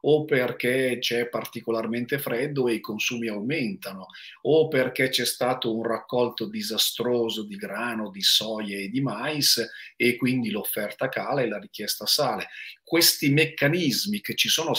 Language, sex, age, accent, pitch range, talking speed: Italian, male, 40-59, native, 110-140 Hz, 145 wpm